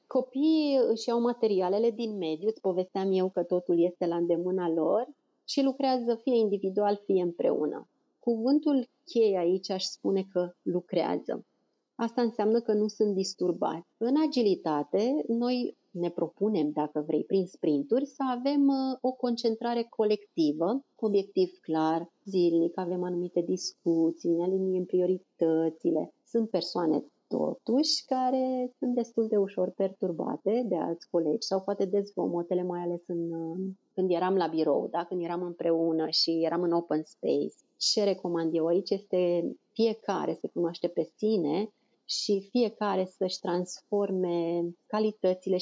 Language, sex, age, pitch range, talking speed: Romanian, female, 30-49, 175-230 Hz, 135 wpm